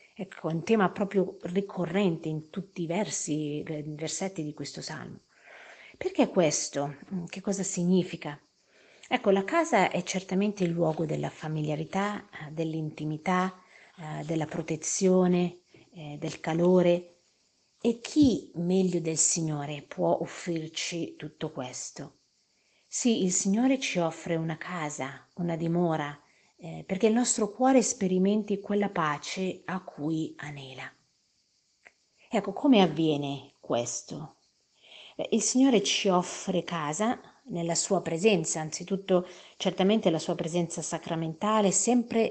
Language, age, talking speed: Italian, 50-69, 120 wpm